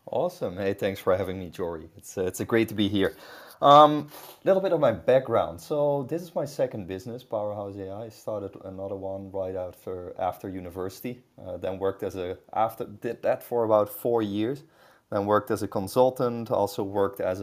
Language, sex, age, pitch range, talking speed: English, male, 20-39, 90-110 Hz, 205 wpm